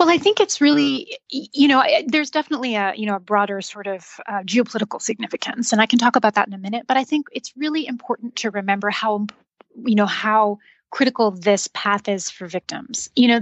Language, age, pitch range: English, 30-49, 205-250 Hz